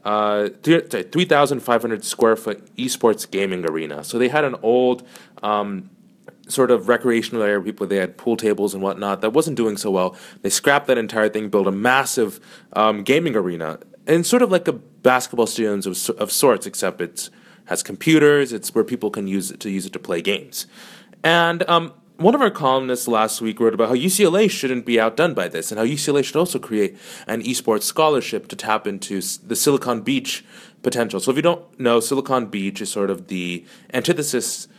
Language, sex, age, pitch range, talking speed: English, male, 30-49, 105-140 Hz, 195 wpm